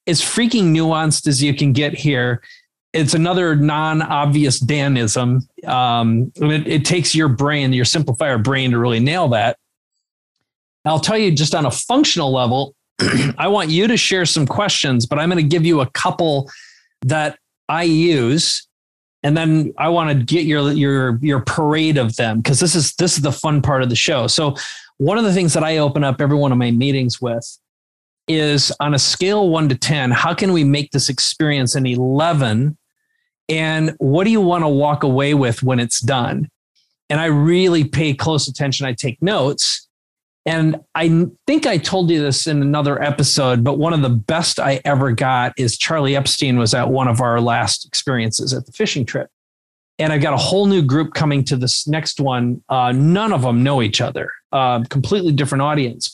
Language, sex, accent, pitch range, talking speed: English, male, American, 130-160 Hz, 190 wpm